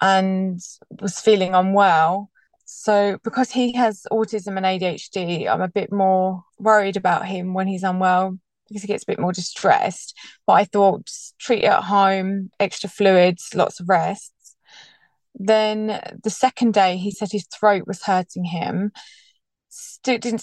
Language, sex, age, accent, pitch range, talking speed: English, female, 20-39, British, 180-210 Hz, 155 wpm